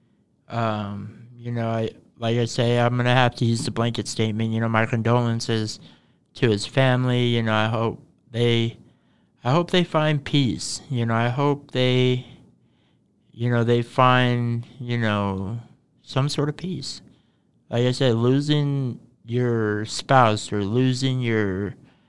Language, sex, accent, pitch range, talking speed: English, male, American, 110-130 Hz, 155 wpm